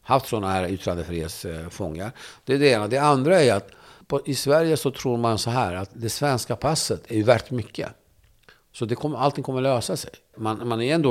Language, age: Swedish, 50-69